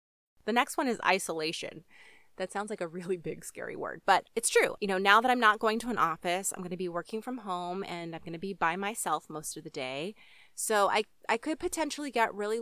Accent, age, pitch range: American, 30-49, 175-225 Hz